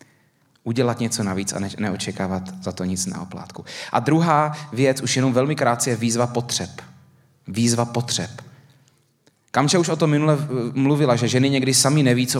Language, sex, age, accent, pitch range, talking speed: Czech, male, 30-49, native, 120-150 Hz, 165 wpm